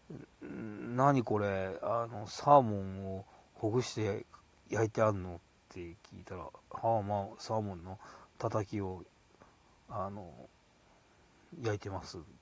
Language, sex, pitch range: Japanese, male, 100-125 Hz